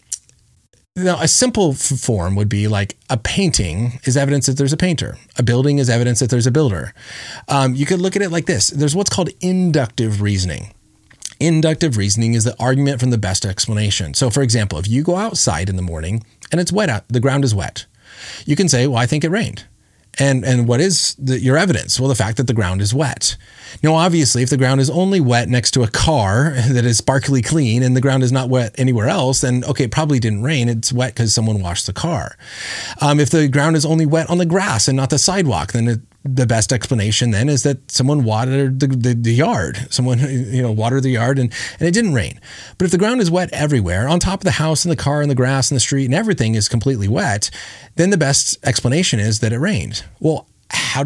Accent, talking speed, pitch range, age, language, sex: American, 230 wpm, 115-150 Hz, 30-49, English, male